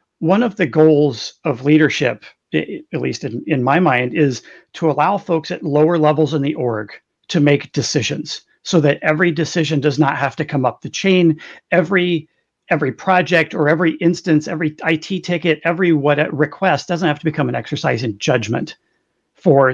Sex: male